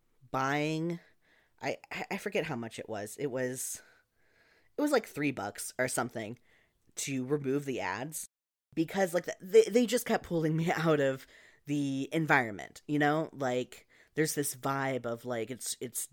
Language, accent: English, American